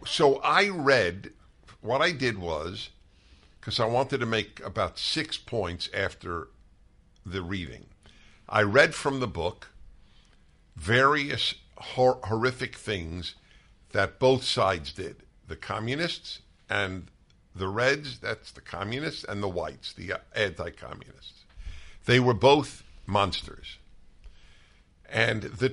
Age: 50-69